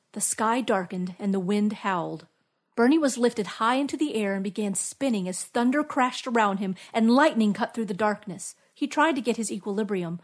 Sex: female